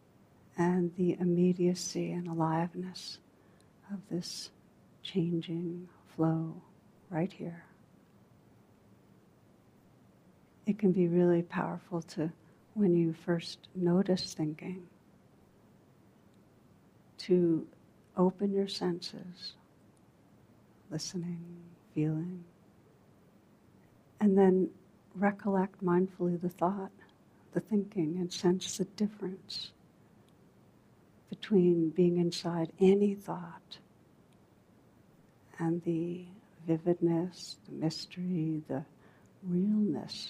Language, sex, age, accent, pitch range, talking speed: English, female, 60-79, American, 170-185 Hz, 75 wpm